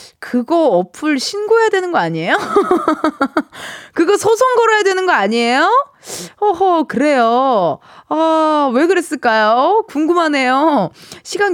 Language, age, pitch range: Korean, 20-39, 225-325 Hz